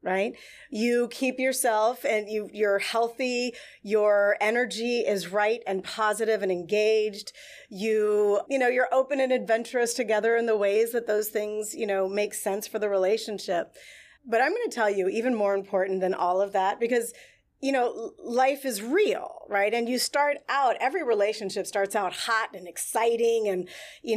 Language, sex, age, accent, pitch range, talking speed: English, female, 30-49, American, 190-235 Hz, 175 wpm